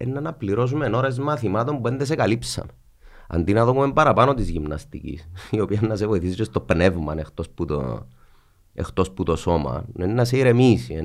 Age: 30-49